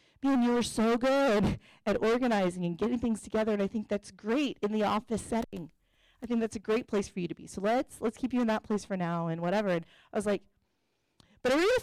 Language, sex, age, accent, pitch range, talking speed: English, female, 30-49, American, 190-245 Hz, 250 wpm